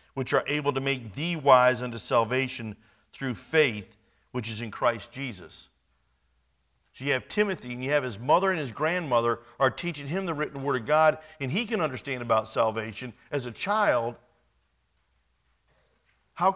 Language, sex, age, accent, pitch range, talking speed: English, male, 50-69, American, 100-145 Hz, 165 wpm